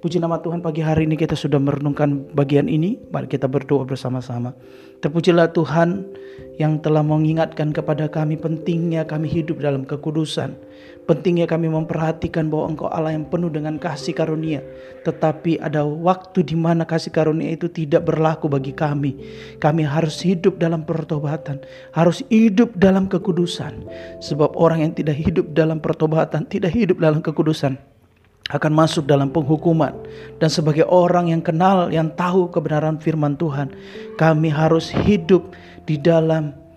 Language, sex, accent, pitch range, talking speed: Indonesian, male, native, 145-170 Hz, 145 wpm